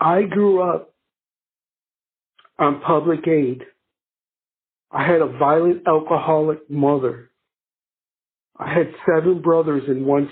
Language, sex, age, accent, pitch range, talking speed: English, male, 60-79, American, 145-170 Hz, 105 wpm